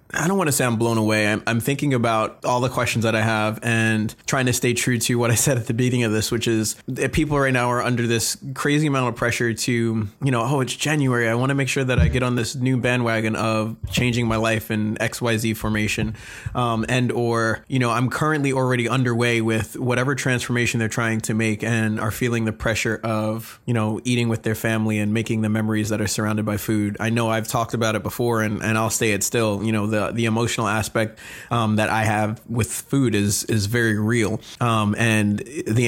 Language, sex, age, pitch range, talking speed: English, male, 20-39, 110-125 Hz, 230 wpm